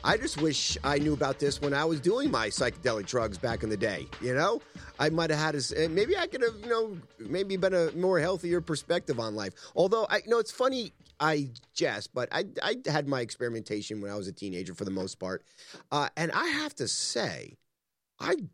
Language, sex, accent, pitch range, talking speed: English, male, American, 110-155 Hz, 220 wpm